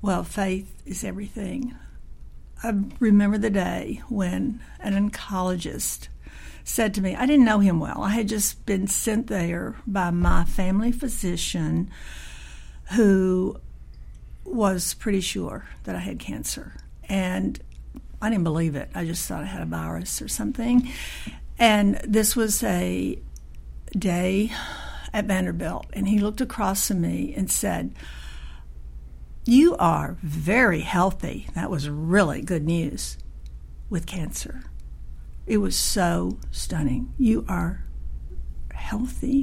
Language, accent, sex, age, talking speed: English, American, female, 60-79, 130 wpm